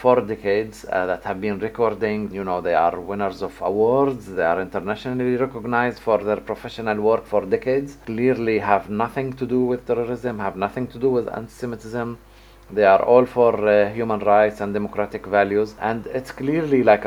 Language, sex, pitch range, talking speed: English, male, 100-120 Hz, 180 wpm